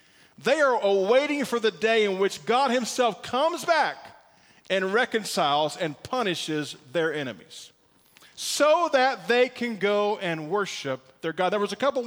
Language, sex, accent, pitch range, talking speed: English, male, American, 210-260 Hz, 155 wpm